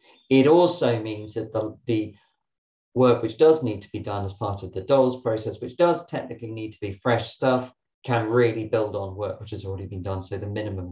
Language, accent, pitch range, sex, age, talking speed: English, British, 100-125 Hz, male, 40-59, 220 wpm